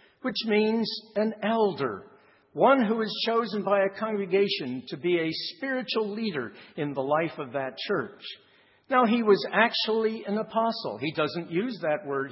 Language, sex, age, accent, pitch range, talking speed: English, male, 60-79, American, 155-210 Hz, 160 wpm